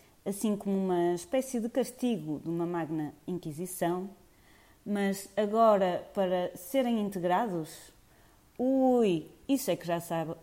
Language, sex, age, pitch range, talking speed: Portuguese, female, 30-49, 165-220 Hz, 120 wpm